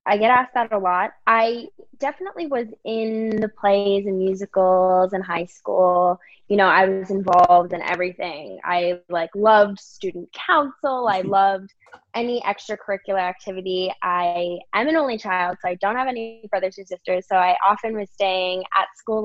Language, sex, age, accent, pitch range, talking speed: English, female, 10-29, American, 180-220 Hz, 170 wpm